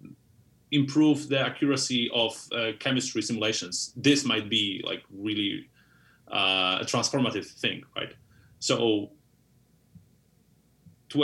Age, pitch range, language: 30-49, 110-135 Hz, English